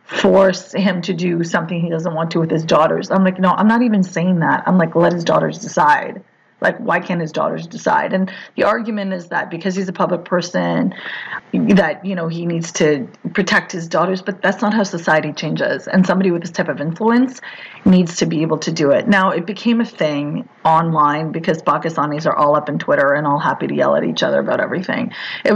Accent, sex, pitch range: American, female, 170-220 Hz